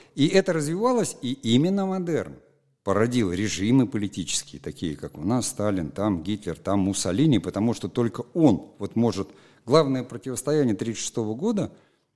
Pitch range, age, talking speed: 100-135 Hz, 50-69, 135 wpm